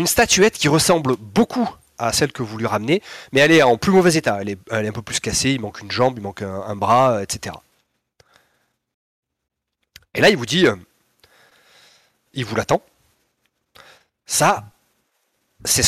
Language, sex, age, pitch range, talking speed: French, male, 30-49, 105-145 Hz, 175 wpm